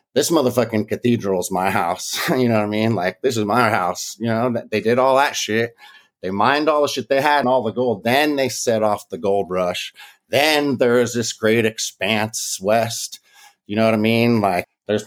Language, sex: English, male